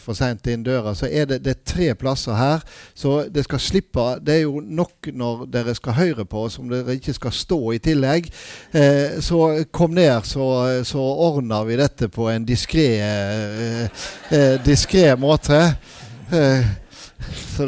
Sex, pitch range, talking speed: male, 115-150 Hz, 185 wpm